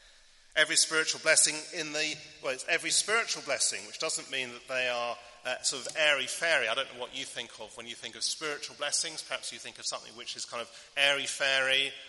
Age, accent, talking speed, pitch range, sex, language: 40-59, British, 215 wpm, 120-155 Hz, male, English